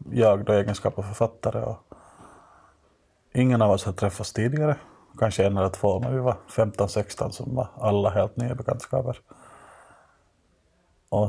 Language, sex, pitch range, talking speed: Finnish, male, 105-120 Hz, 145 wpm